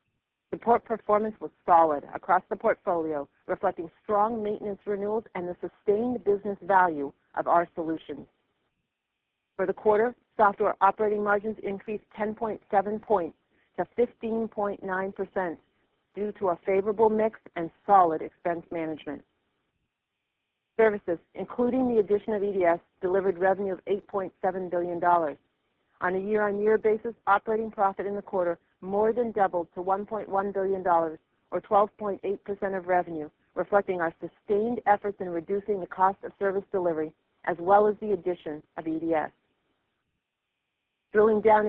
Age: 50-69